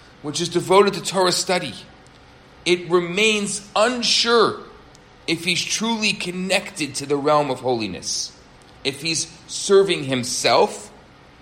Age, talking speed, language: 40-59, 115 wpm, English